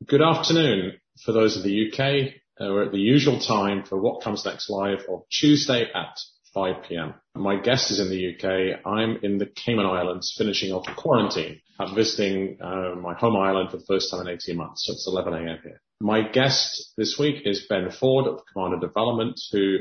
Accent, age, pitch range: British, 30-49, 90-115 Hz